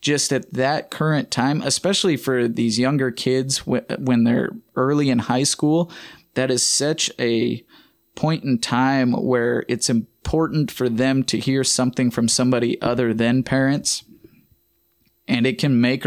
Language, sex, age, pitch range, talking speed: English, male, 20-39, 120-135 Hz, 150 wpm